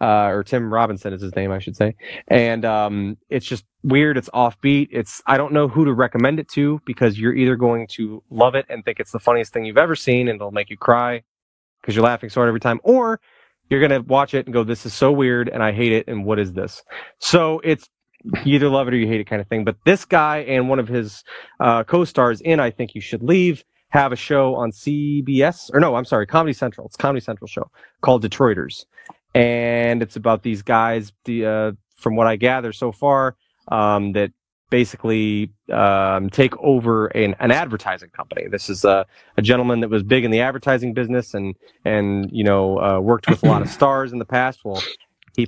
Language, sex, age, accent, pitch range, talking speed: English, male, 30-49, American, 105-135 Hz, 225 wpm